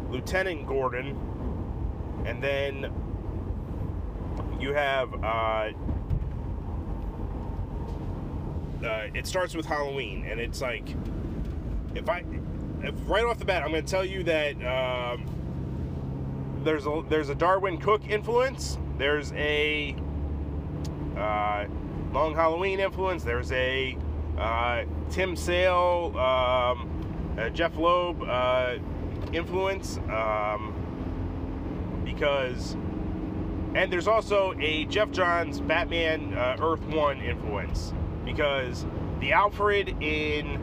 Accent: American